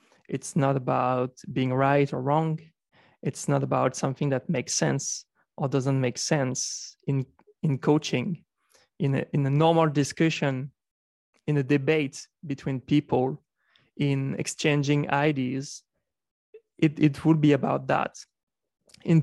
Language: English